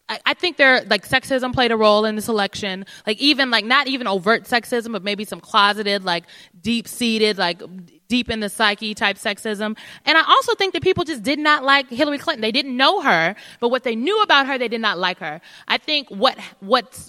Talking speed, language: 220 wpm, English